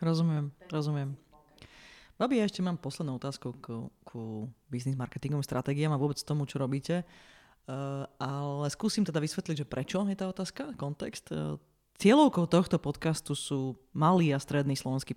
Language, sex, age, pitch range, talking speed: Slovak, female, 20-39, 135-170 Hz, 150 wpm